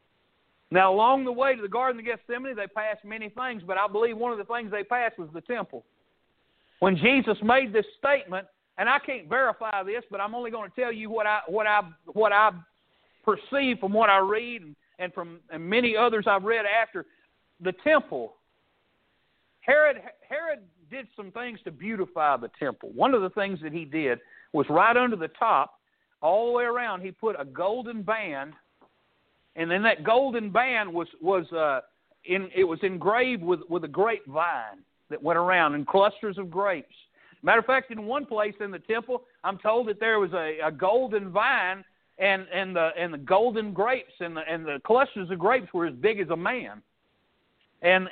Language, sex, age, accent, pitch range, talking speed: English, male, 50-69, American, 185-240 Hz, 195 wpm